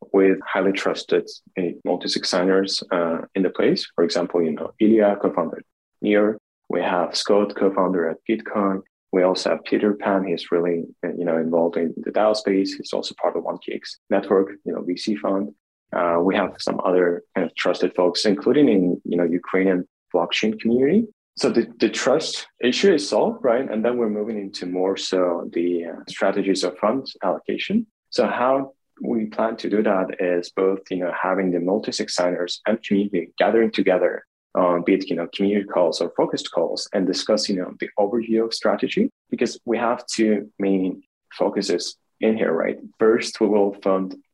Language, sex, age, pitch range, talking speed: English, male, 20-39, 90-110 Hz, 180 wpm